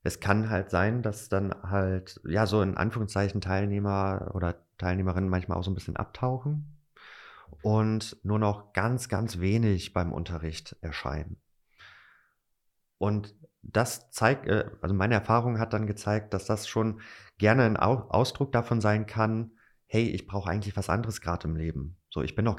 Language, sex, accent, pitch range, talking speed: German, male, German, 85-105 Hz, 160 wpm